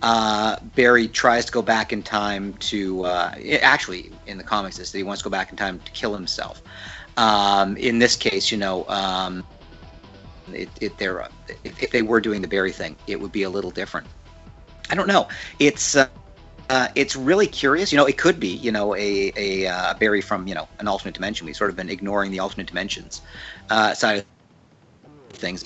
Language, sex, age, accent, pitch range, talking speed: English, male, 50-69, American, 95-120 Hz, 210 wpm